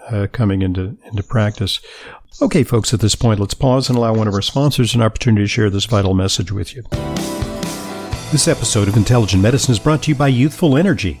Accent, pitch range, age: American, 105-135 Hz, 50-69